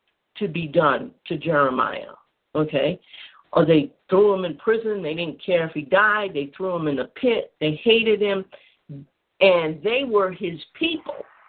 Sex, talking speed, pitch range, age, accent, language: female, 170 wpm, 170-235 Hz, 50-69, American, English